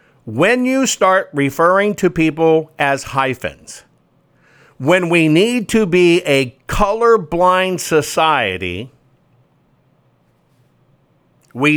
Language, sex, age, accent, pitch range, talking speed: English, male, 50-69, American, 140-195 Hz, 85 wpm